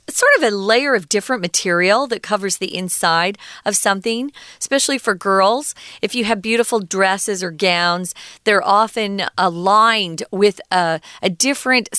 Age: 40-59